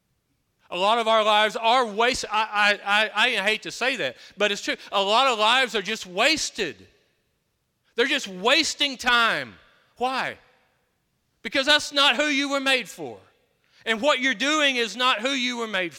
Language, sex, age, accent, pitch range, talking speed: English, male, 40-59, American, 145-240 Hz, 180 wpm